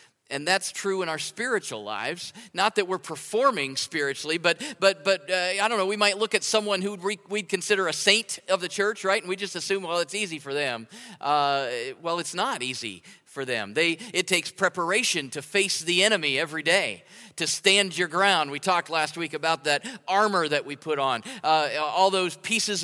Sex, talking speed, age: male, 205 wpm, 40-59